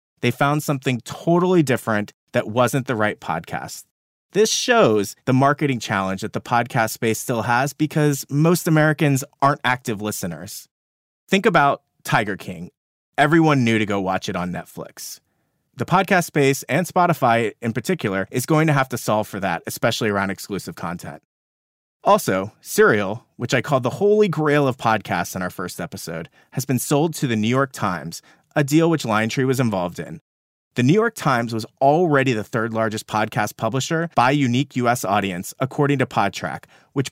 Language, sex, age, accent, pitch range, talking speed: English, male, 30-49, American, 105-145 Hz, 170 wpm